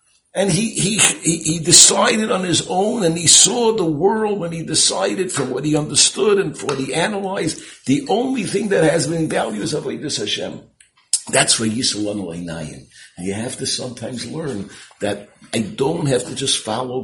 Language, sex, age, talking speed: English, male, 60-79, 185 wpm